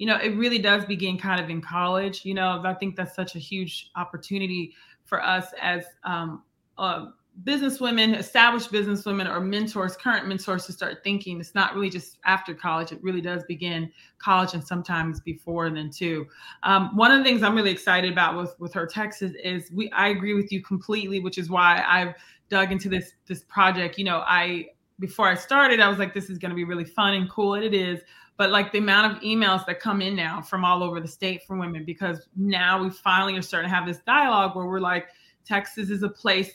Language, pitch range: English, 180-210 Hz